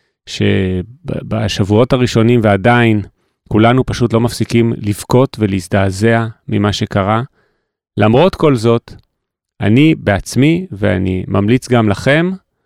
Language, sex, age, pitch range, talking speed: Hebrew, male, 30-49, 100-125 Hz, 95 wpm